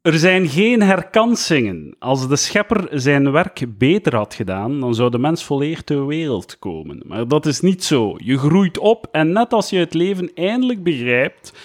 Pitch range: 145-200 Hz